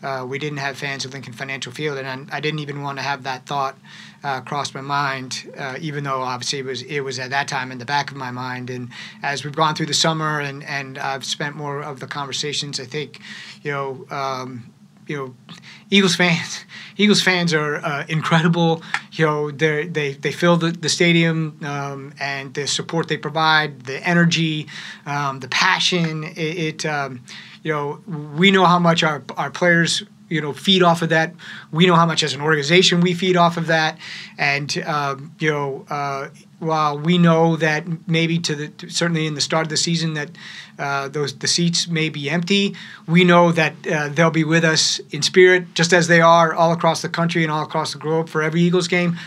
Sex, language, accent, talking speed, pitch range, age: male, English, American, 210 wpm, 140-170 Hz, 30-49